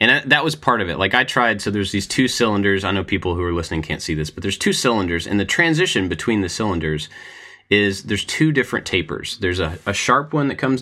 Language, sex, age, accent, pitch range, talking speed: English, male, 30-49, American, 85-110 Hz, 250 wpm